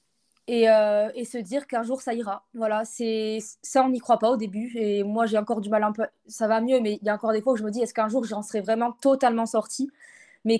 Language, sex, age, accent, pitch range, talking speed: French, female, 20-39, French, 205-240 Hz, 275 wpm